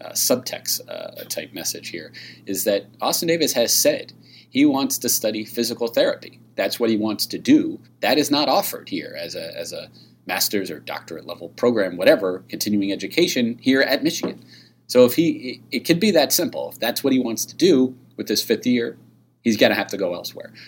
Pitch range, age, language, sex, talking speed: 95-125 Hz, 40-59, English, male, 205 wpm